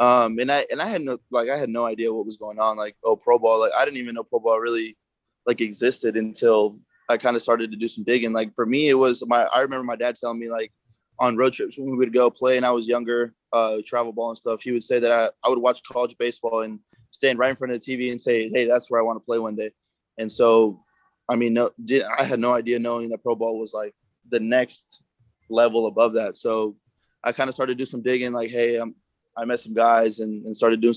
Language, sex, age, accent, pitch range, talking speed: English, male, 20-39, American, 110-125 Hz, 270 wpm